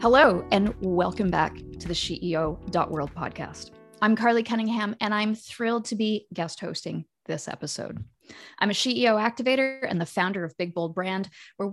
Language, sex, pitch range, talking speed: English, female, 175-230 Hz, 165 wpm